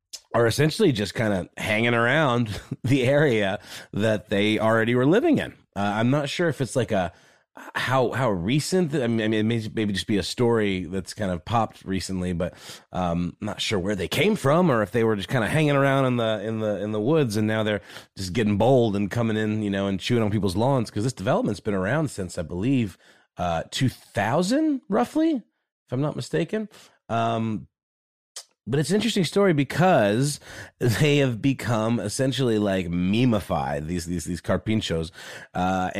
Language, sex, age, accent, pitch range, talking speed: English, male, 30-49, American, 95-125 Hz, 195 wpm